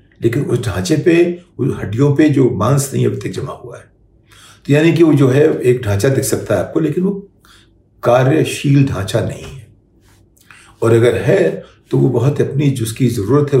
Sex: male